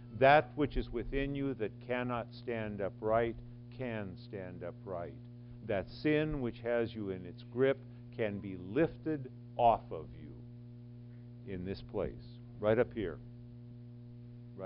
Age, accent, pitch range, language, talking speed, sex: 50-69, American, 115-120 Hz, English, 130 wpm, male